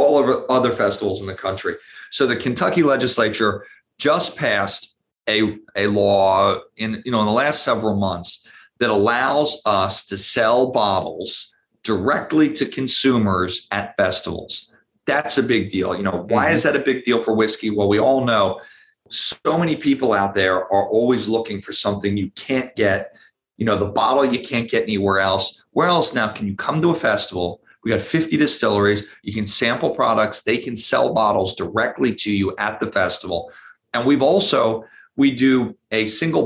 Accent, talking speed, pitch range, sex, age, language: American, 180 wpm, 100-130 Hz, male, 40-59, English